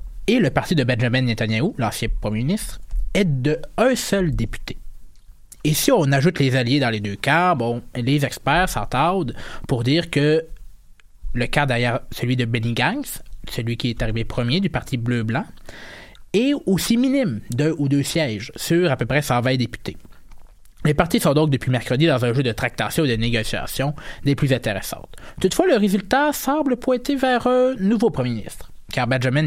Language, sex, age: French, male, 20-39